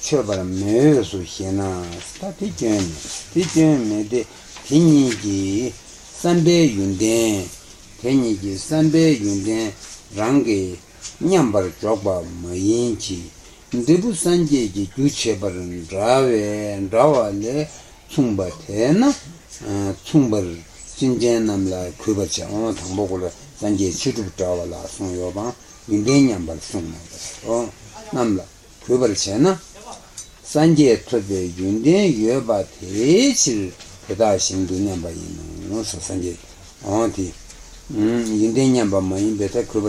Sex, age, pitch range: male, 60-79, 95-125 Hz